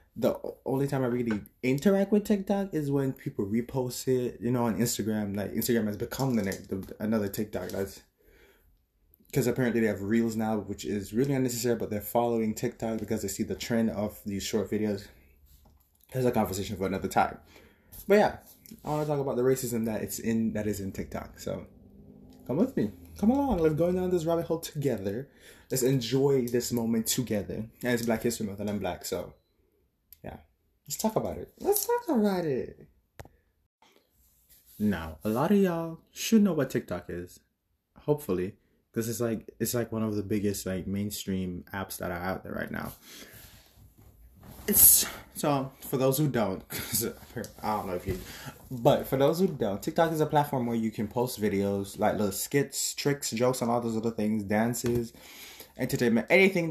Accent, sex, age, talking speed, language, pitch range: American, male, 20-39, 185 wpm, English, 100-135 Hz